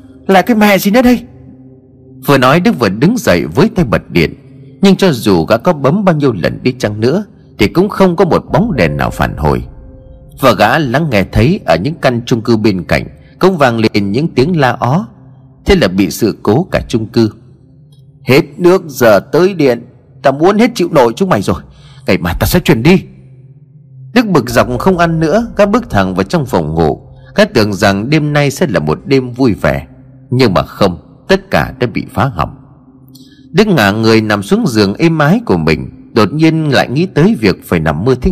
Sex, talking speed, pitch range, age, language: male, 215 wpm, 120-175 Hz, 30-49, Vietnamese